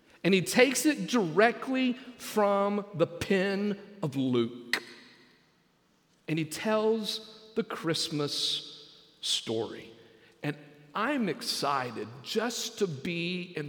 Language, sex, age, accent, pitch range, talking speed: English, male, 50-69, American, 160-230 Hz, 100 wpm